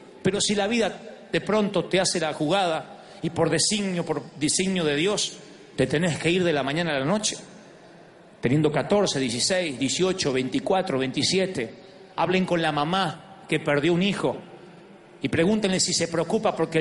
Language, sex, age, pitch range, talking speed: Spanish, male, 40-59, 155-195 Hz, 170 wpm